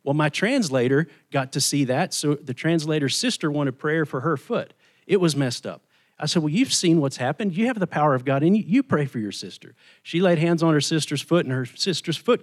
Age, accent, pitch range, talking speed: 40-59, American, 135-170 Hz, 245 wpm